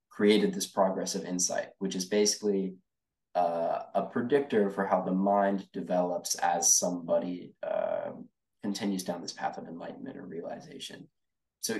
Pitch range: 90-105 Hz